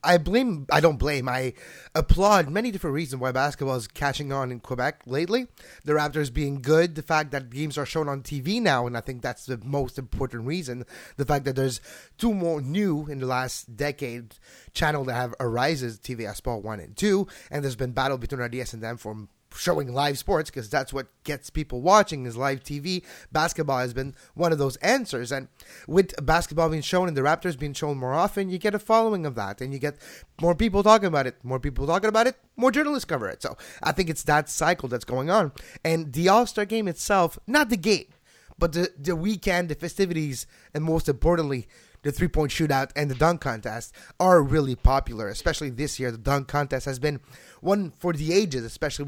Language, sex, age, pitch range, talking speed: English, male, 20-39, 130-175 Hz, 210 wpm